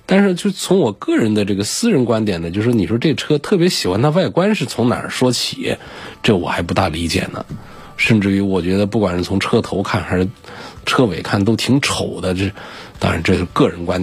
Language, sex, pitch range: Chinese, male, 95-155 Hz